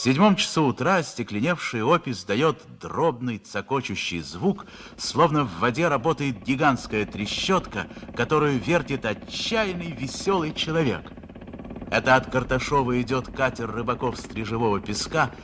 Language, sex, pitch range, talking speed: Russian, male, 95-140 Hz, 115 wpm